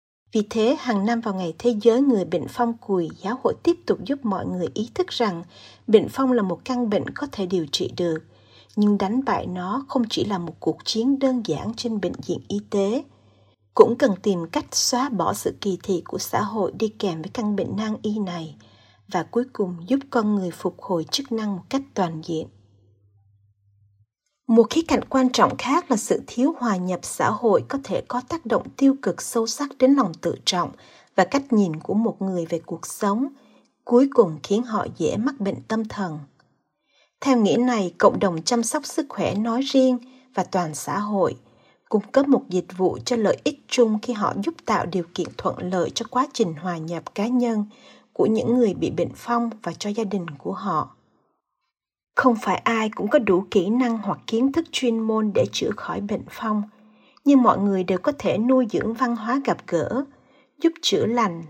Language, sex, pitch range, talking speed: Vietnamese, female, 180-250 Hz, 205 wpm